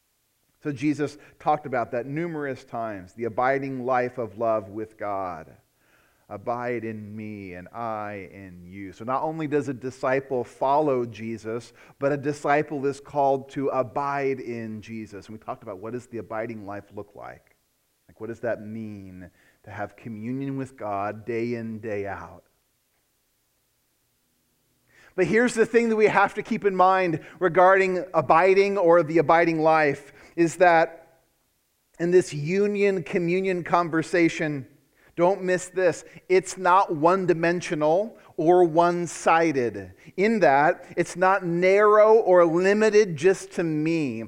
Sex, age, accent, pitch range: male, 40-59, American, 115-175 Hz